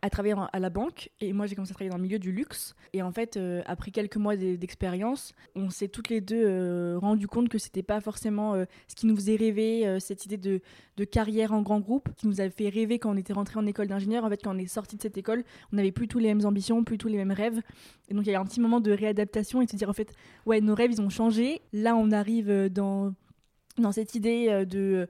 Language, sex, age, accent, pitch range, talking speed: French, female, 20-39, French, 195-220 Hz, 275 wpm